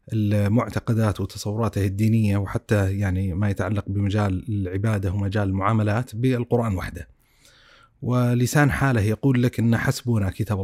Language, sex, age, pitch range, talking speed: Arabic, male, 30-49, 105-130 Hz, 115 wpm